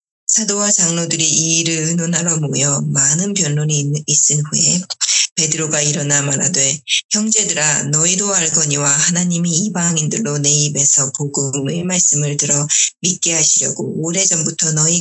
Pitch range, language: 150-175 Hz, Korean